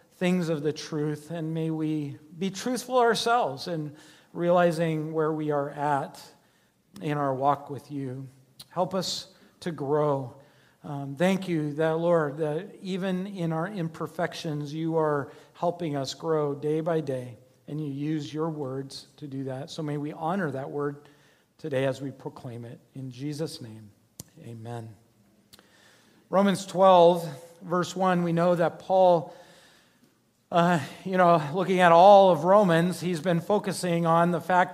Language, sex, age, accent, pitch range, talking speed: English, male, 50-69, American, 150-200 Hz, 150 wpm